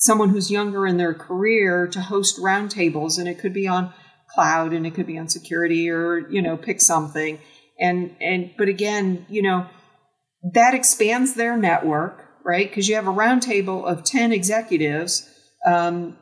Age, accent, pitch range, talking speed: 40-59, American, 170-210 Hz, 175 wpm